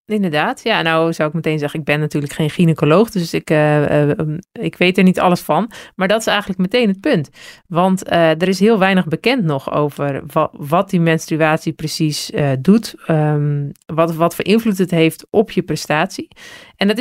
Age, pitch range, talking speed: 40-59, 155-200 Hz, 185 wpm